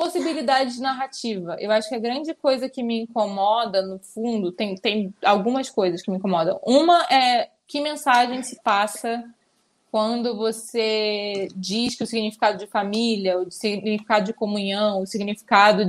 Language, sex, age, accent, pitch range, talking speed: Portuguese, female, 20-39, Brazilian, 205-245 Hz, 155 wpm